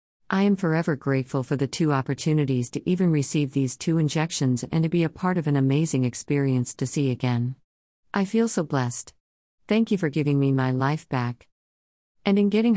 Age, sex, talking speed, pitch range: 50-69, female, 195 wpm, 130-165 Hz